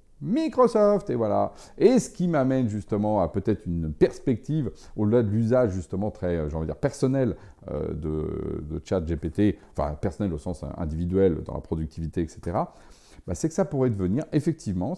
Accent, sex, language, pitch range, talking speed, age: French, male, French, 90-130 Hz, 170 wpm, 40-59